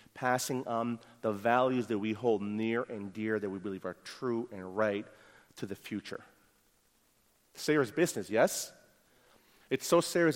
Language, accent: English, American